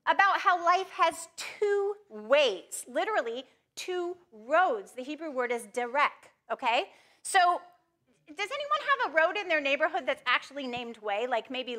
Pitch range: 260-360 Hz